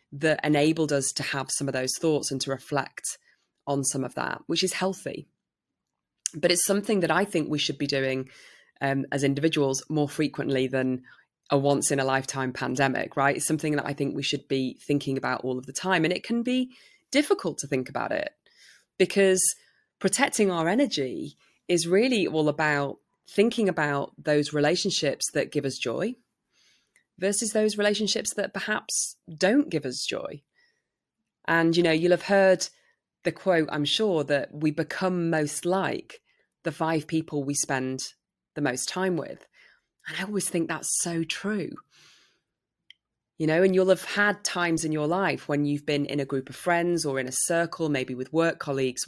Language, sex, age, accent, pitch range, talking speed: English, female, 20-39, British, 140-190 Hz, 180 wpm